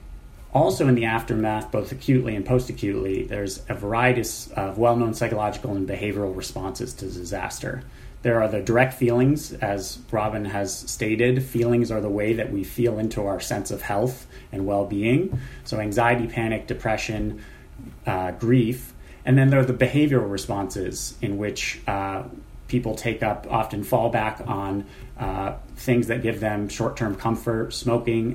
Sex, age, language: male, 30-49, English